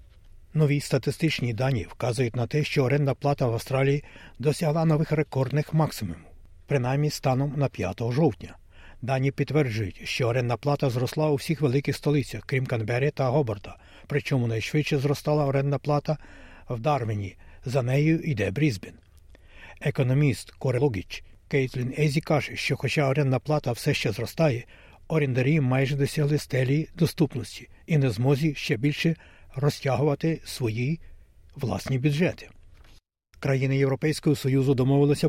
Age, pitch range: 60-79, 115-145 Hz